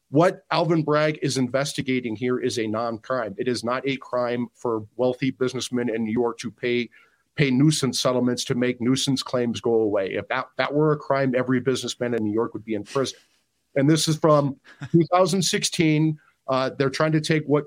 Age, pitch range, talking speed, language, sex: 40-59, 125-150 Hz, 195 wpm, English, male